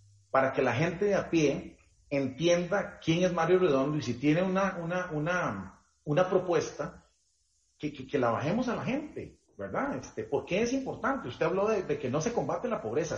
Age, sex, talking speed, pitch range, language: 40-59, male, 180 wpm, 125-185 Hz, Spanish